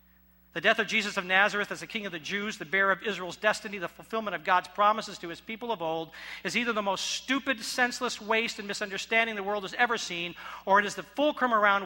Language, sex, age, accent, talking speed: English, male, 50-69, American, 240 wpm